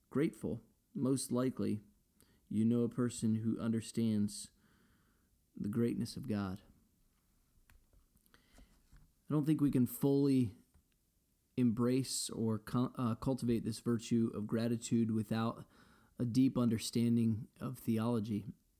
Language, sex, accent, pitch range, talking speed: English, male, American, 105-125 Hz, 110 wpm